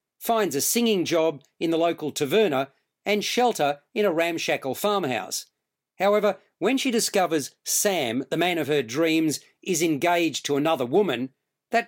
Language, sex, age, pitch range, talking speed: English, male, 50-69, 155-210 Hz, 150 wpm